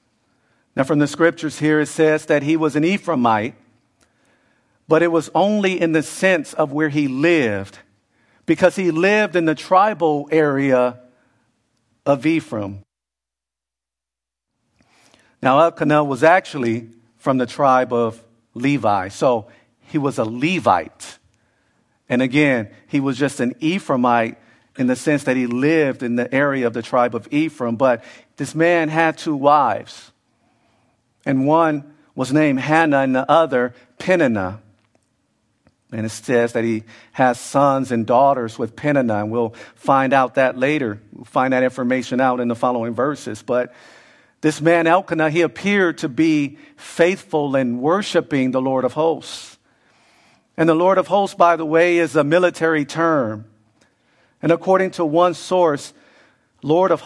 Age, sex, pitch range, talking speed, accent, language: 50-69, male, 120-160 Hz, 150 wpm, American, English